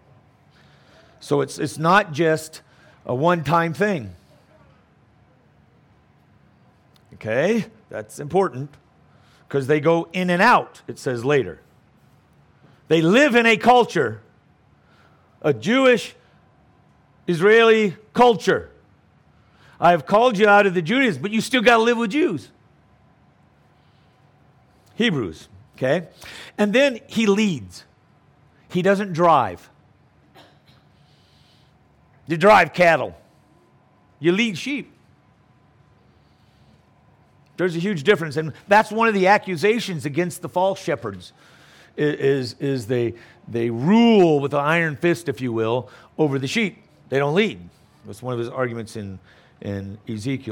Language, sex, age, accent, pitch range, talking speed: English, male, 50-69, American, 130-195 Hz, 120 wpm